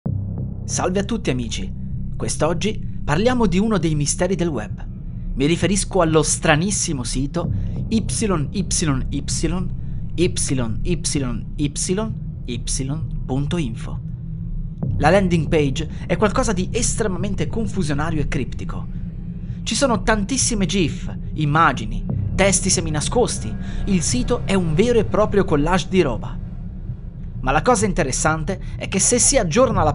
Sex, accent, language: male, native, Italian